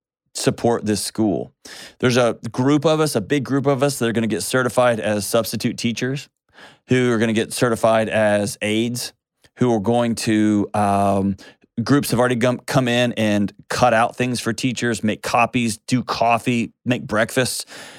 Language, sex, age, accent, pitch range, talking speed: English, male, 30-49, American, 100-120 Hz, 175 wpm